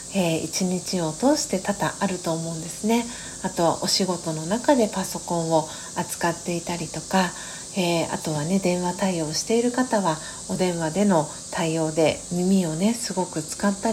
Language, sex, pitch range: Japanese, female, 165-210 Hz